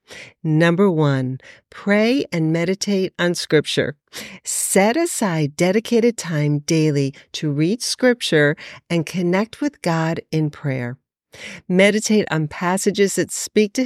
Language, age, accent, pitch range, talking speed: English, 50-69, American, 155-210 Hz, 115 wpm